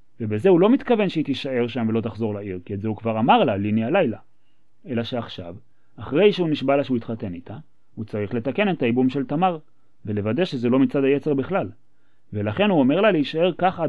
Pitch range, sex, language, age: 110-150 Hz, male, Hebrew, 30-49